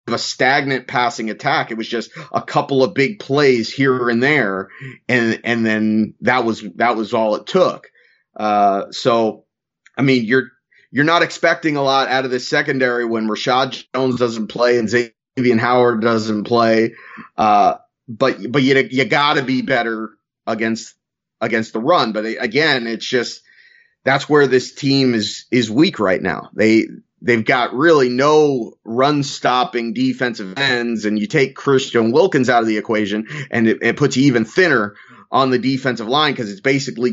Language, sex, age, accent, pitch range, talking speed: English, male, 30-49, American, 115-135 Hz, 175 wpm